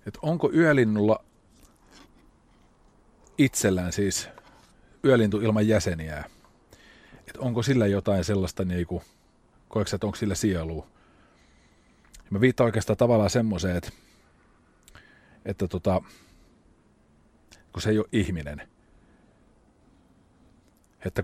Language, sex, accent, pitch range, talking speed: English, male, Finnish, 90-110 Hz, 95 wpm